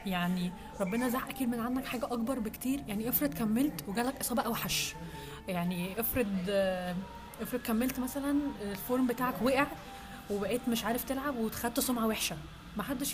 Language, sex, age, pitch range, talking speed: Arabic, female, 20-39, 210-250 Hz, 140 wpm